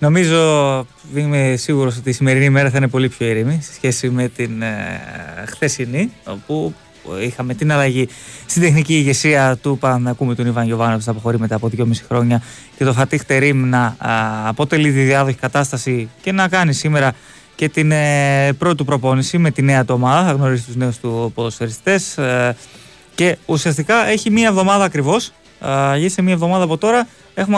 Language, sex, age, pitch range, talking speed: Greek, male, 20-39, 125-160 Hz, 180 wpm